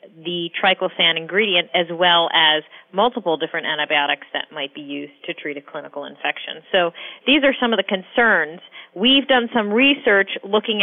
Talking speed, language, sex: 165 wpm, English, female